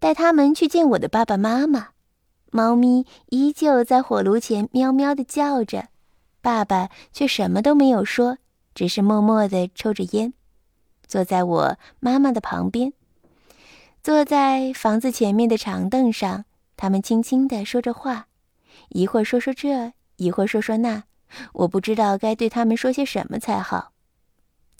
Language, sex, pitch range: Chinese, female, 205-270 Hz